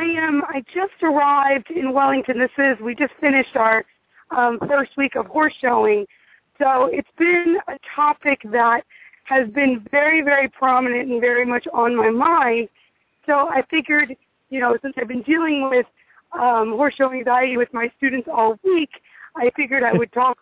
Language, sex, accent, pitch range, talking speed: English, female, American, 240-295 Hz, 175 wpm